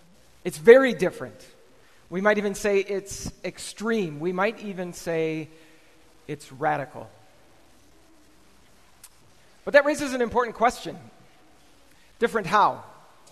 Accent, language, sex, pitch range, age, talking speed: American, English, male, 165-210 Hz, 40-59, 105 wpm